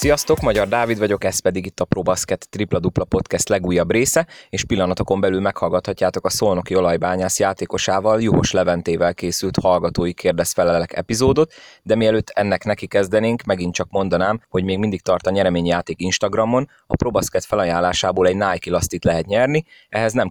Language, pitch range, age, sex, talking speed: Hungarian, 90-110 Hz, 30-49, male, 155 wpm